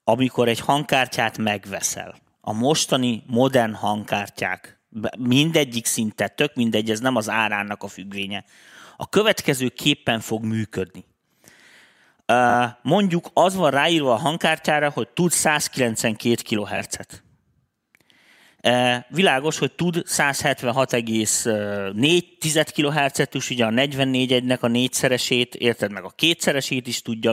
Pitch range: 110-150 Hz